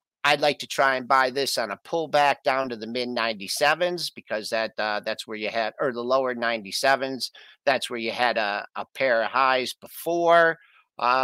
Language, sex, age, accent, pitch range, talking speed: English, male, 50-69, American, 135-175 Hz, 210 wpm